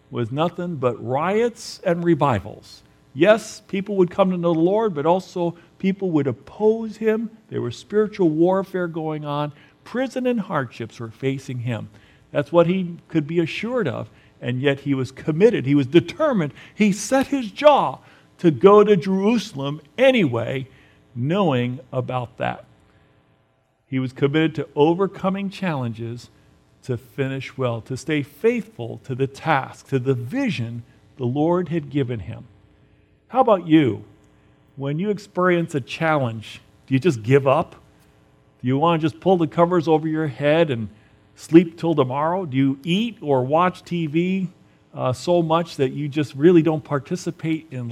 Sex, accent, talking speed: male, American, 160 wpm